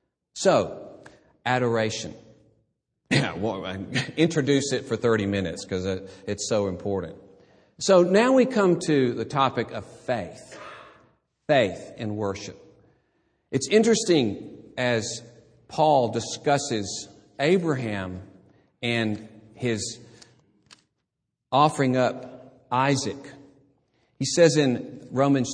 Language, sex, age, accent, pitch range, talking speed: English, male, 50-69, American, 110-145 Hz, 90 wpm